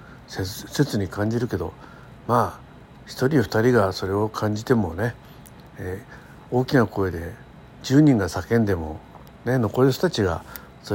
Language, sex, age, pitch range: Japanese, male, 60-79, 100-140 Hz